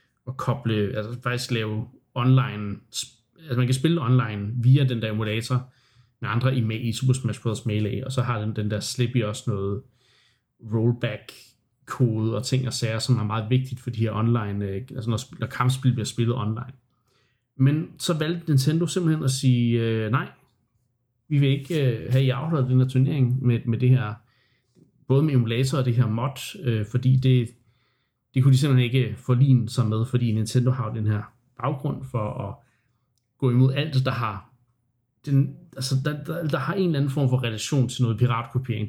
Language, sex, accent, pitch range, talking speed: Danish, male, native, 115-130 Hz, 185 wpm